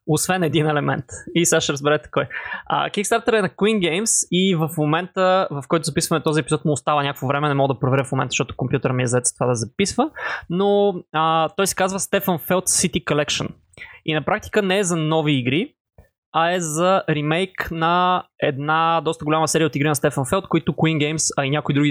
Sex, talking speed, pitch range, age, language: male, 210 wpm, 140-180 Hz, 20-39, Bulgarian